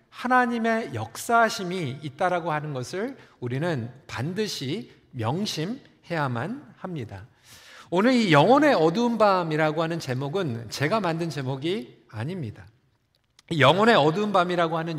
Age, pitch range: 40-59, 135-230 Hz